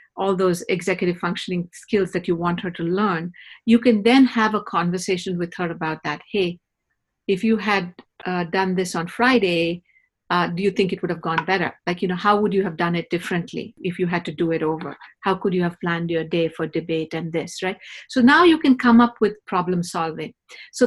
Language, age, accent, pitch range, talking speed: English, 50-69, Indian, 170-215 Hz, 225 wpm